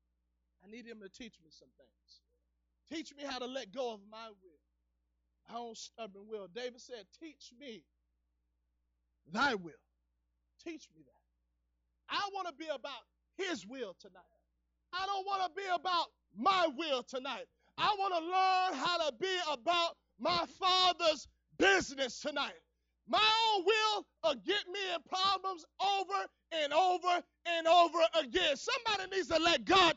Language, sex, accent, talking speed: English, male, American, 155 wpm